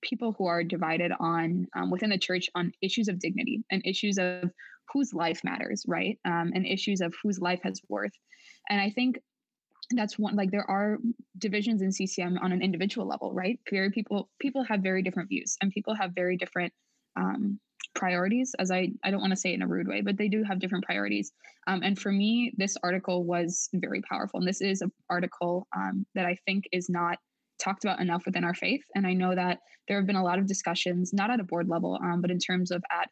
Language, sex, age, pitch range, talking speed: English, female, 20-39, 175-205 Hz, 225 wpm